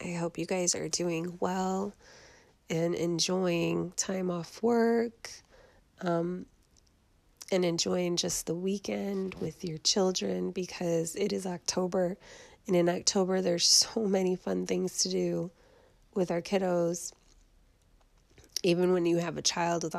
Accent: American